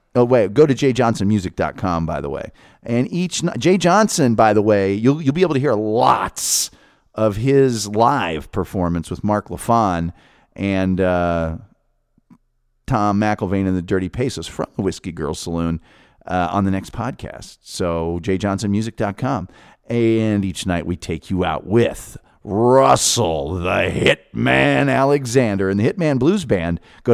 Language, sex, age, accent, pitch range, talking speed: English, male, 40-59, American, 95-135 Hz, 150 wpm